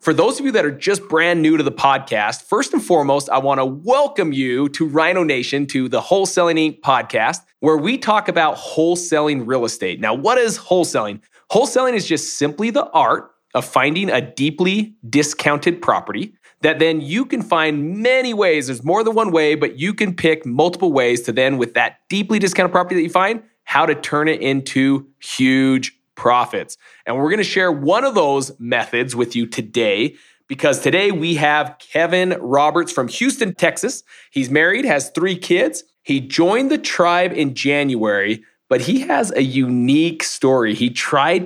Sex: male